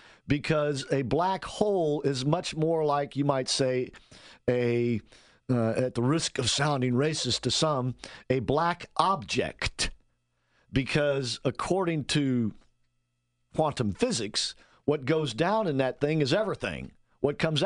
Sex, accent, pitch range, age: male, American, 115-145 Hz, 50-69